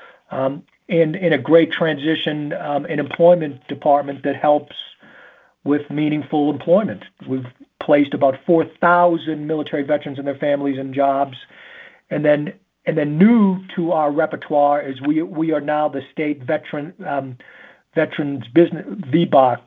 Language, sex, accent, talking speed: English, male, American, 140 wpm